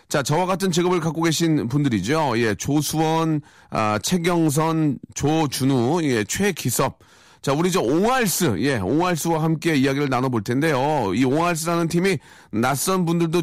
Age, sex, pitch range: 40-59, male, 120-160 Hz